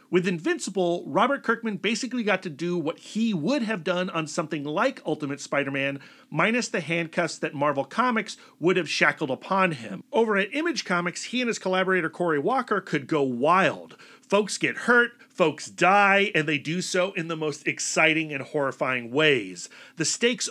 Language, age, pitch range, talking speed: English, 40-59, 150-210 Hz, 175 wpm